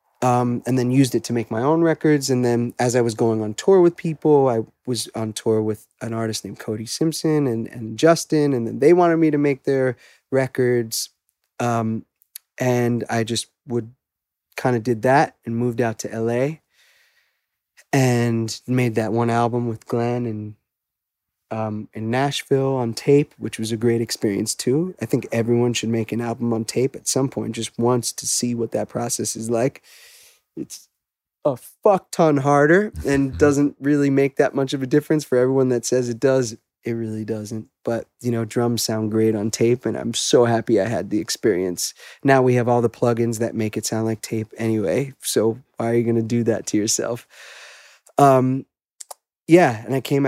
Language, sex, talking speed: English, male, 195 wpm